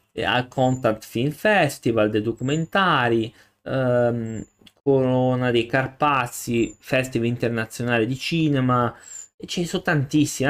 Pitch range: 105-130 Hz